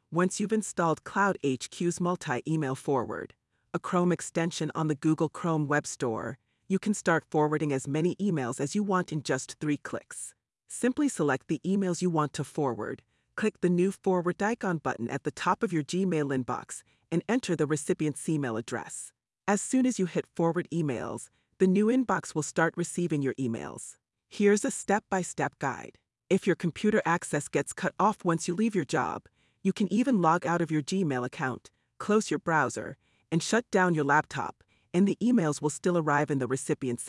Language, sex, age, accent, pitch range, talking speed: English, female, 40-59, American, 140-185 Hz, 185 wpm